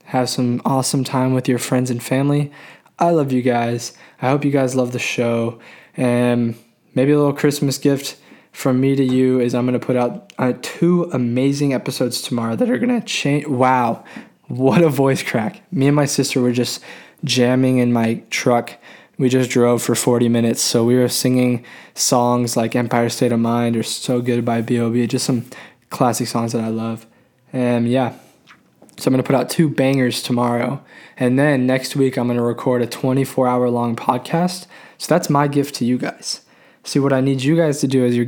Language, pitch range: English, 120-135 Hz